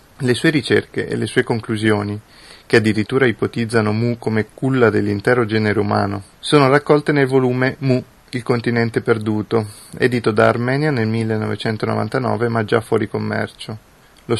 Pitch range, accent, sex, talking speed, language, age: 105-125 Hz, native, male, 140 wpm, Italian, 30-49